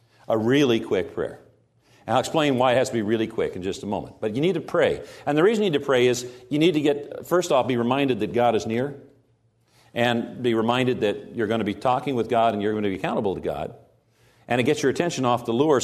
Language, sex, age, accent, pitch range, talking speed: English, male, 50-69, American, 115-135 Hz, 265 wpm